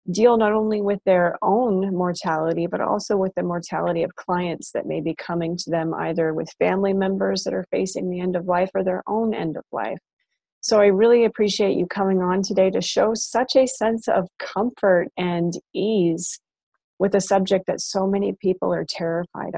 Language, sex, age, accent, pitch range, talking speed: English, female, 30-49, American, 180-210 Hz, 195 wpm